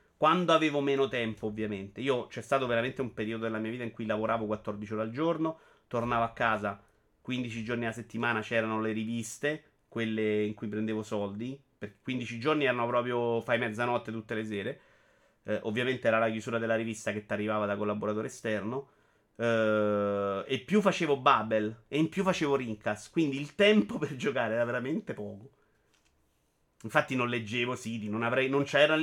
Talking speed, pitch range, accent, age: 175 wpm, 110-130 Hz, native, 30-49